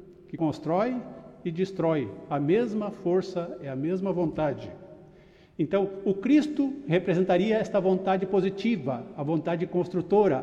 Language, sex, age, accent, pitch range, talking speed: Portuguese, male, 60-79, Brazilian, 170-210 Hz, 120 wpm